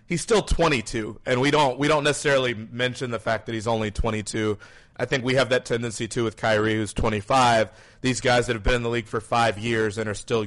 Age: 30-49